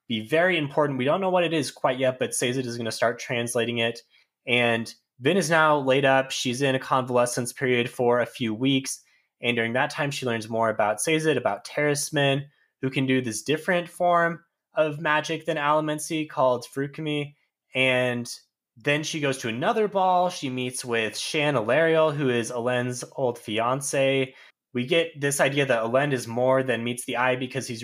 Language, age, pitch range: English, 20-39, 120-145 Hz